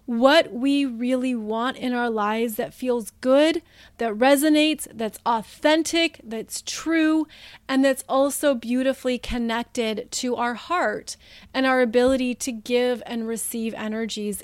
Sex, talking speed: female, 135 wpm